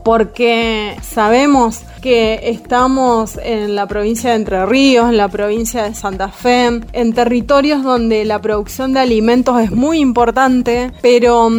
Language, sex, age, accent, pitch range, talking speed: Spanish, female, 20-39, Argentinian, 220-260 Hz, 140 wpm